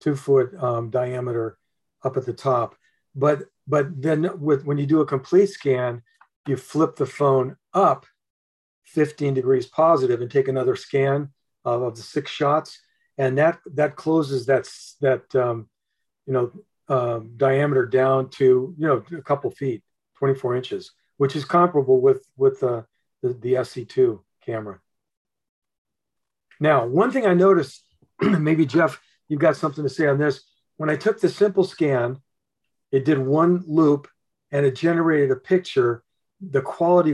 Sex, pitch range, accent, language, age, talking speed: male, 130-160 Hz, American, English, 40-59, 155 wpm